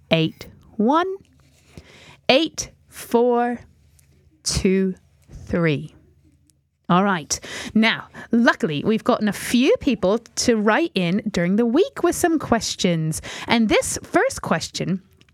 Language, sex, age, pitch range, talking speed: English, female, 30-49, 190-275 Hz, 110 wpm